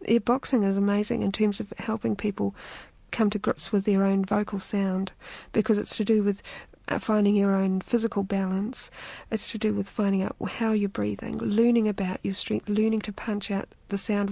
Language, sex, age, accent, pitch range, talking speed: English, female, 50-69, Australian, 195-220 Hz, 190 wpm